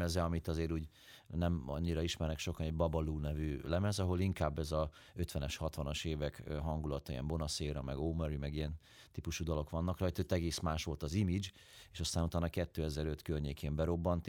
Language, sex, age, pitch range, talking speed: Hungarian, male, 30-49, 80-90 Hz, 175 wpm